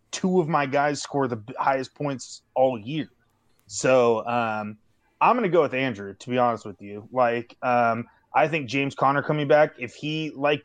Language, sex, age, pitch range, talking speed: English, male, 20-39, 115-145 Hz, 190 wpm